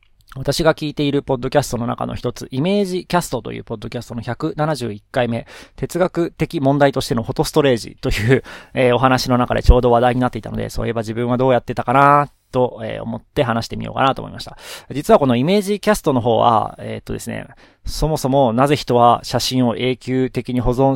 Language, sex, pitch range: Japanese, male, 120-150 Hz